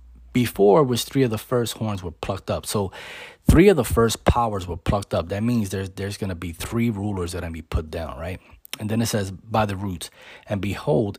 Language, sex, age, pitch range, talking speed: English, male, 30-49, 85-110 Hz, 240 wpm